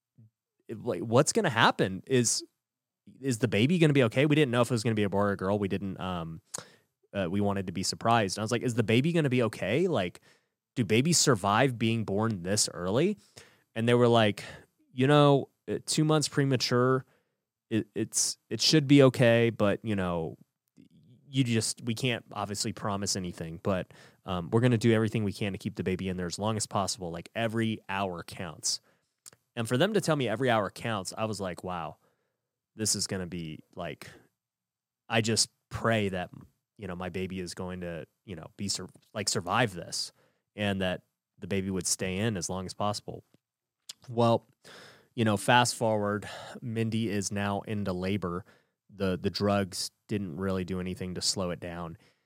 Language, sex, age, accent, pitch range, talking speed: English, male, 20-39, American, 95-120 Hz, 195 wpm